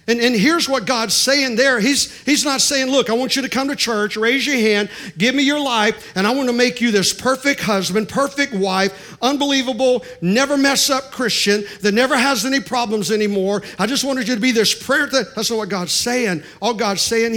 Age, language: 50-69, English